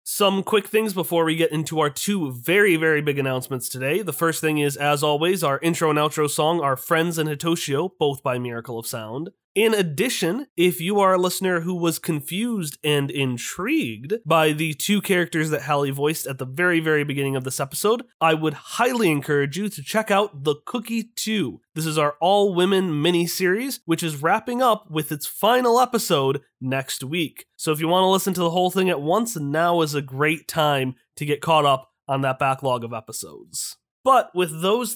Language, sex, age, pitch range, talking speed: English, male, 30-49, 145-195 Hz, 200 wpm